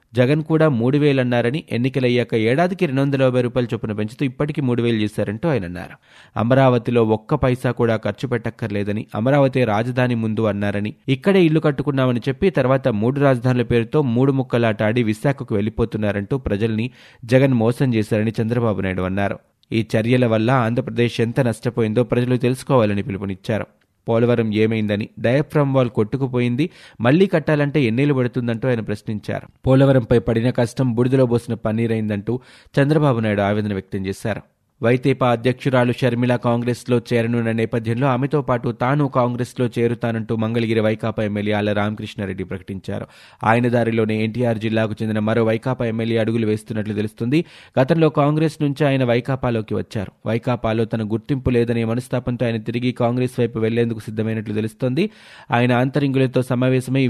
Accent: native